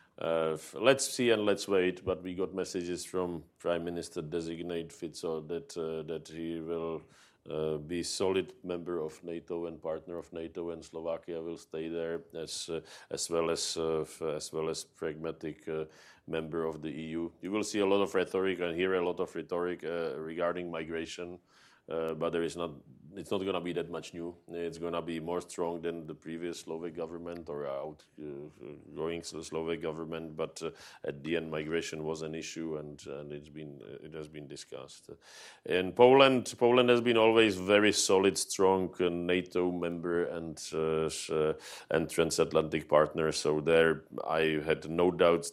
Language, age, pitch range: English, 40-59, 80-85 Hz